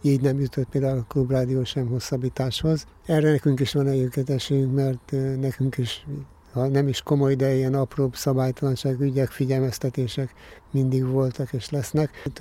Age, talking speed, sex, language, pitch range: 60-79, 150 wpm, male, Hungarian, 130-140 Hz